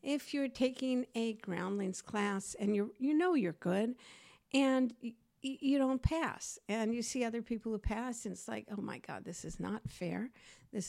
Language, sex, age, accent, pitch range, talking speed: English, female, 60-79, American, 195-255 Hz, 195 wpm